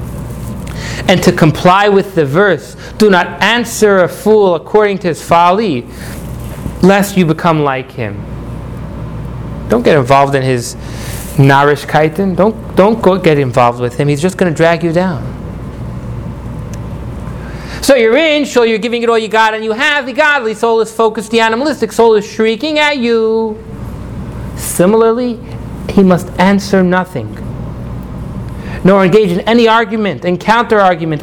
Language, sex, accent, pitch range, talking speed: English, male, American, 150-215 Hz, 150 wpm